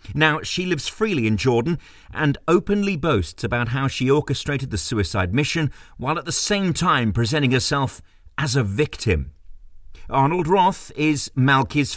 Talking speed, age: 150 wpm, 40-59